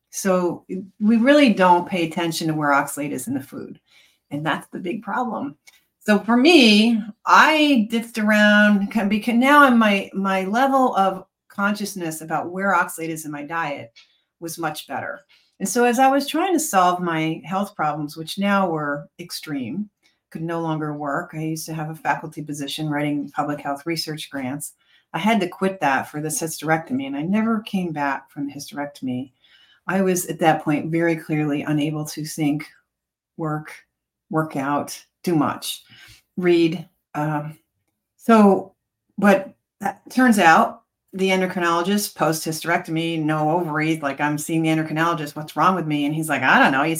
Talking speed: 170 wpm